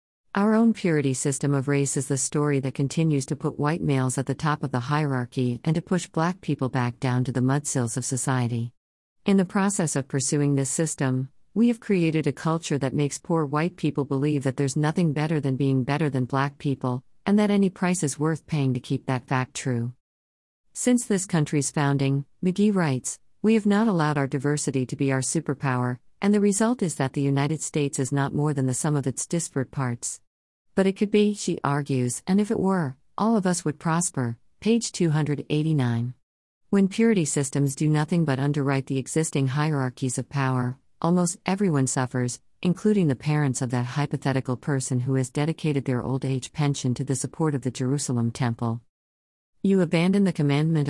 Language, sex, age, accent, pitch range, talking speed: English, female, 50-69, American, 130-170 Hz, 195 wpm